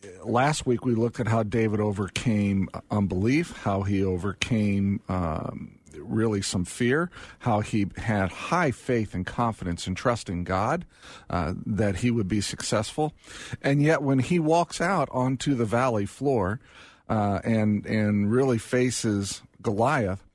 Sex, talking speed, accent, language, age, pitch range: male, 145 wpm, American, English, 50-69, 100-125 Hz